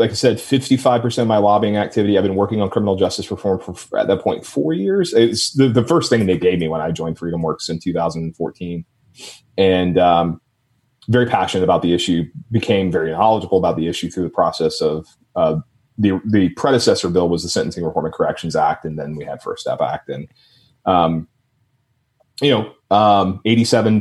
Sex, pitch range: male, 95-130 Hz